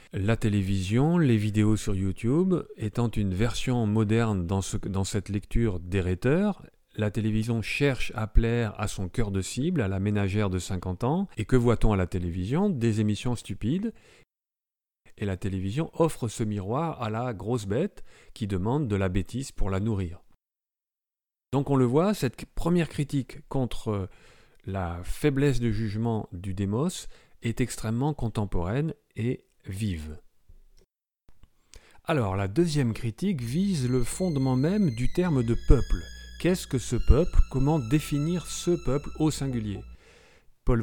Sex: male